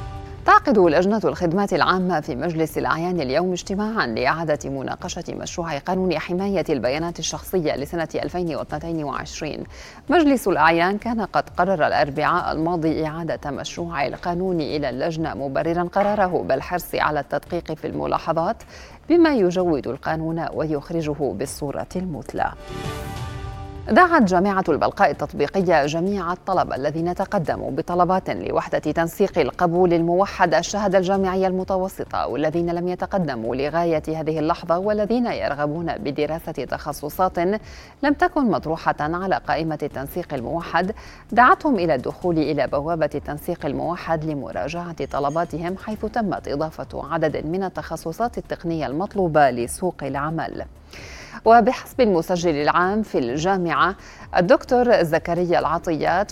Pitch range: 155-190 Hz